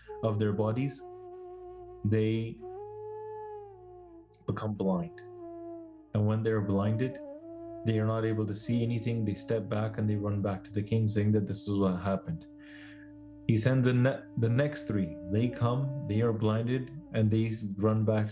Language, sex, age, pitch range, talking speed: English, male, 20-39, 110-140 Hz, 165 wpm